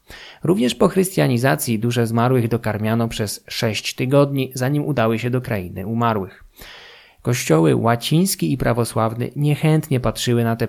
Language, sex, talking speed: Polish, male, 130 wpm